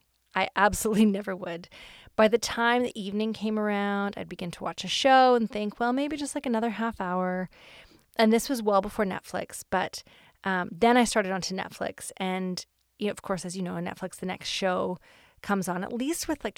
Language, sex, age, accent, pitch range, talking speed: English, female, 30-49, American, 185-220 Hz, 210 wpm